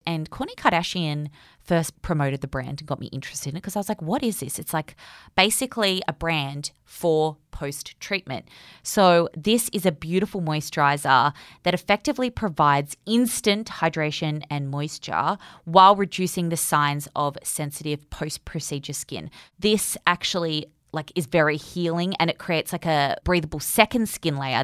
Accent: Australian